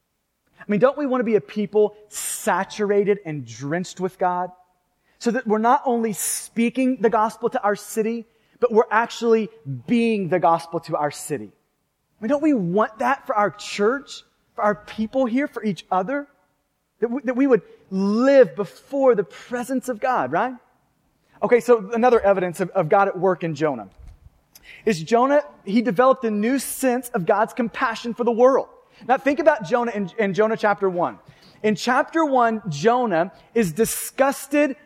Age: 30-49